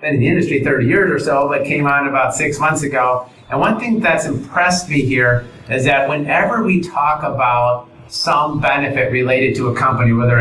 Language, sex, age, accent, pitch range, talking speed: English, male, 30-49, American, 120-140 Hz, 200 wpm